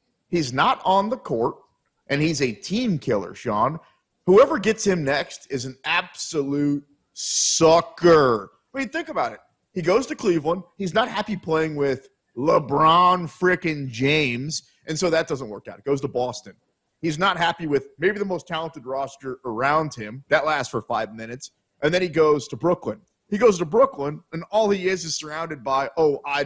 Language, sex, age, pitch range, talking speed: English, male, 30-49, 140-190 Hz, 185 wpm